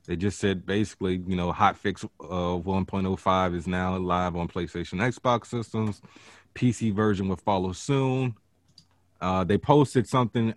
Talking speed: 150 wpm